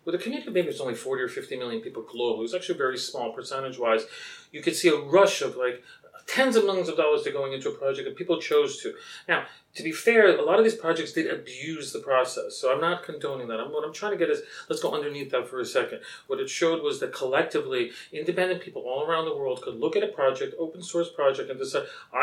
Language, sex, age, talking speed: English, male, 40-59, 245 wpm